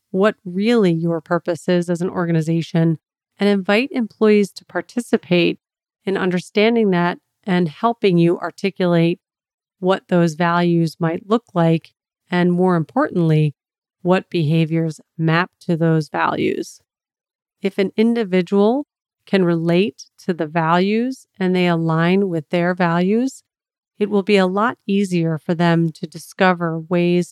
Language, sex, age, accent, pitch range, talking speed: English, female, 40-59, American, 170-195 Hz, 130 wpm